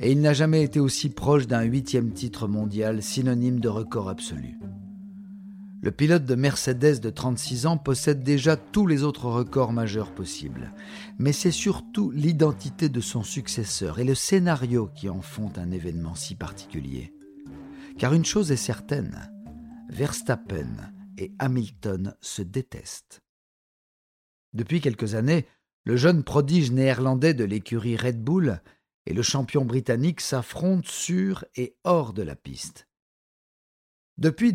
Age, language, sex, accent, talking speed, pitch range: 50-69, French, male, French, 140 wpm, 110-145 Hz